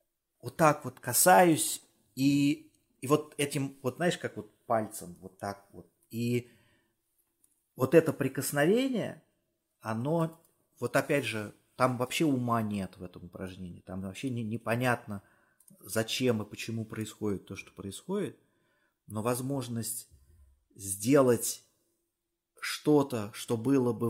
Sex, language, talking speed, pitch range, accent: male, Russian, 120 wpm, 95-125 Hz, native